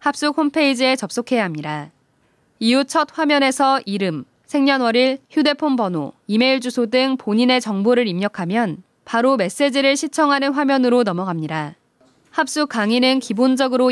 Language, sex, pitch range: Korean, female, 210-270 Hz